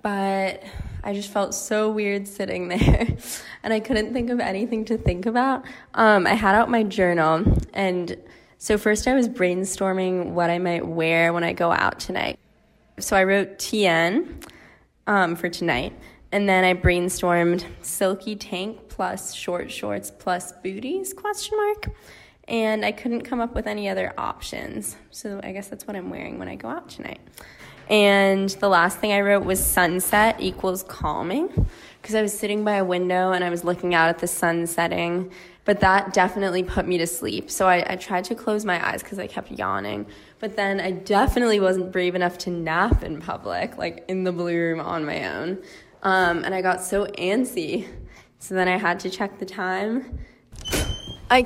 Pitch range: 180-210 Hz